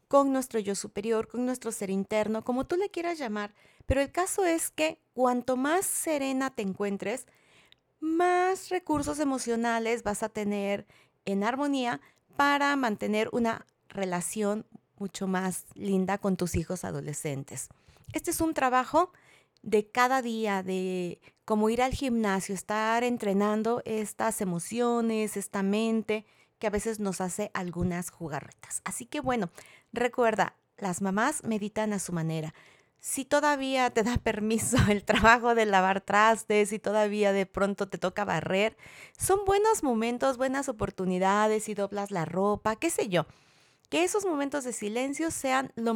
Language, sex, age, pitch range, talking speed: Spanish, female, 40-59, 195-260 Hz, 150 wpm